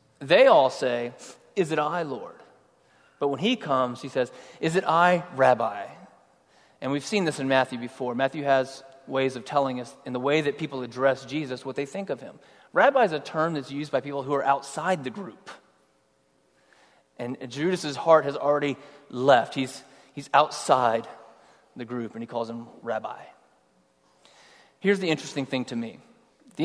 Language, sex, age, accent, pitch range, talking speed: English, male, 30-49, American, 125-165 Hz, 175 wpm